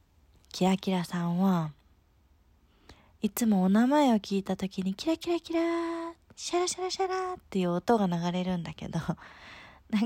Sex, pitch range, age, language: female, 160-210 Hz, 20-39, Japanese